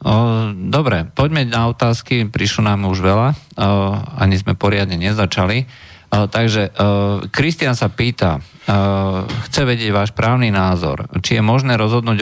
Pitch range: 95-110 Hz